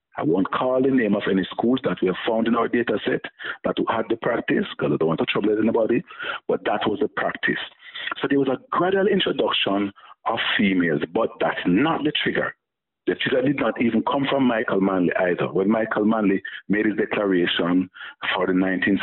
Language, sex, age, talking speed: English, male, 50-69, 200 wpm